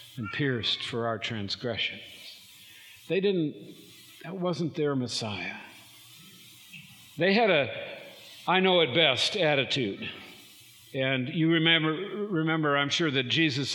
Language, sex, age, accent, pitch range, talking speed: English, male, 60-79, American, 130-170 Hz, 120 wpm